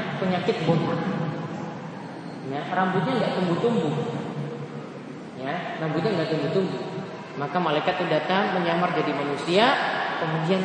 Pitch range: 160-200 Hz